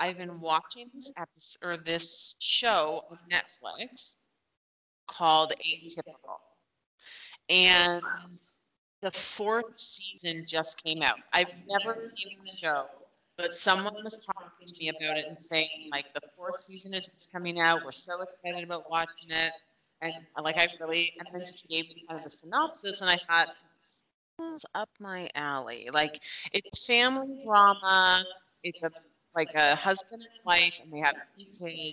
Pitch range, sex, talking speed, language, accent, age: 155-190 Hz, female, 160 wpm, English, American, 30-49